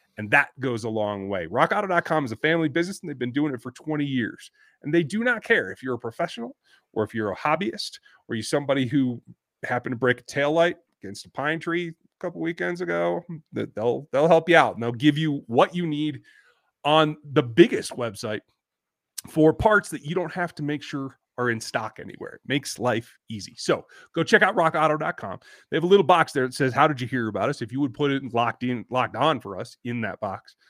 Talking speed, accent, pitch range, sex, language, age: 225 wpm, American, 125-175 Hz, male, English, 30-49